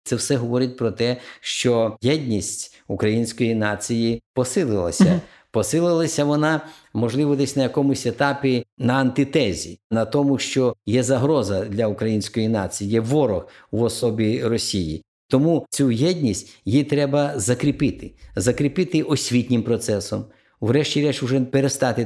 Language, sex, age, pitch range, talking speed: Ukrainian, male, 50-69, 110-140 Hz, 120 wpm